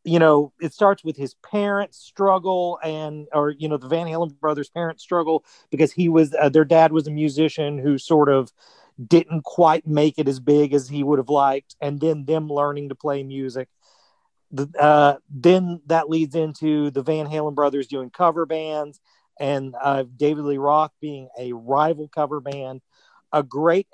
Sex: male